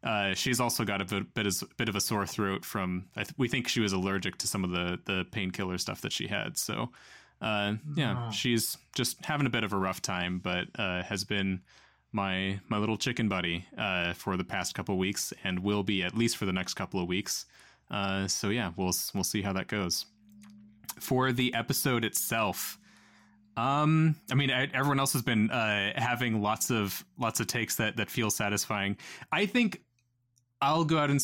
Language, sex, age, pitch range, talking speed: English, male, 20-39, 100-125 Hz, 205 wpm